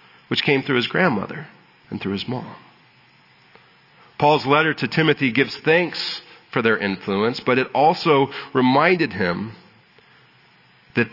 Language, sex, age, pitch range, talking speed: English, male, 40-59, 110-145 Hz, 130 wpm